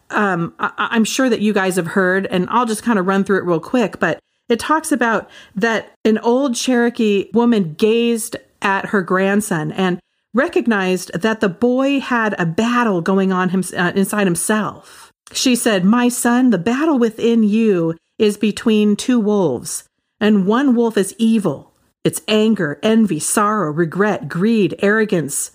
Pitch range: 185-235 Hz